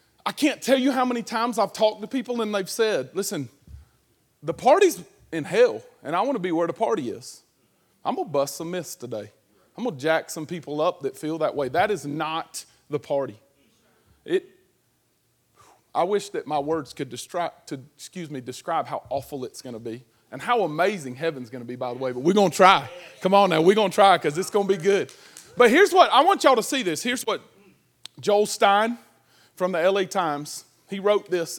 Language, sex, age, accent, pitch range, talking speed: English, male, 30-49, American, 160-230 Hz, 220 wpm